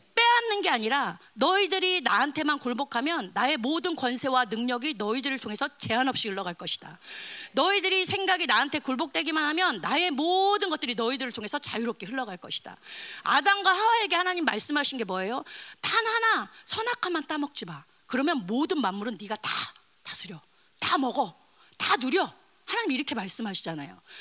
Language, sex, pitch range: Korean, female, 240-375 Hz